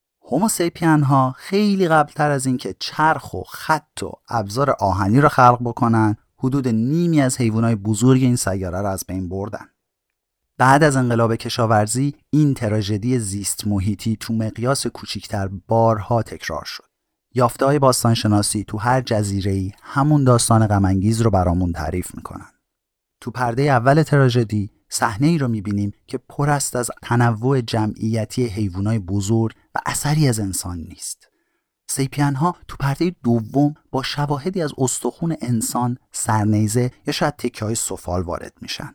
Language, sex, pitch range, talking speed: Persian, male, 100-135 Hz, 135 wpm